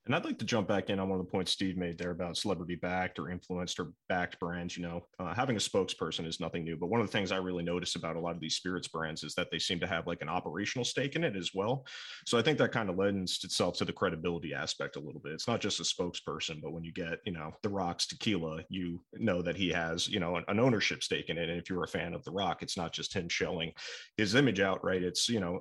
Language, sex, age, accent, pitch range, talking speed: English, male, 30-49, American, 85-95 Hz, 290 wpm